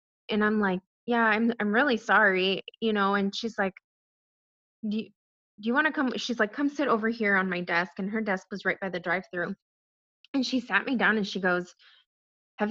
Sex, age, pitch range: female, 20-39, 195-255 Hz